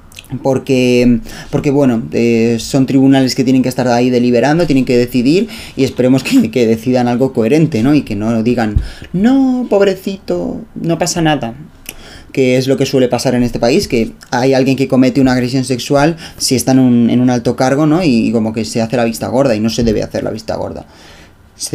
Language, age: Spanish, 20-39